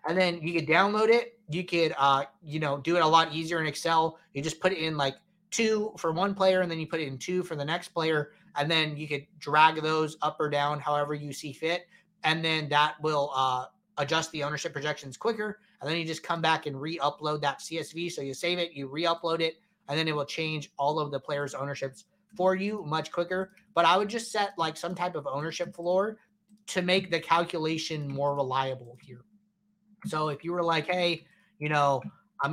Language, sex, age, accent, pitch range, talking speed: English, male, 30-49, American, 150-195 Hz, 220 wpm